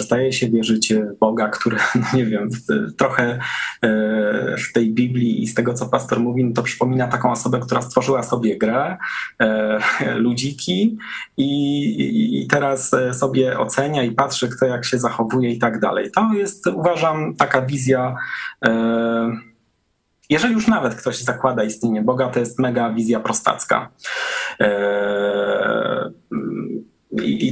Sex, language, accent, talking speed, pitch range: male, Polish, native, 145 wpm, 110-130 Hz